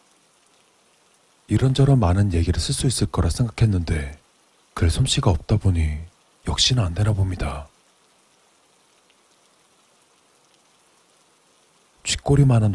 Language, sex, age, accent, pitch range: Korean, male, 40-59, native, 85-115 Hz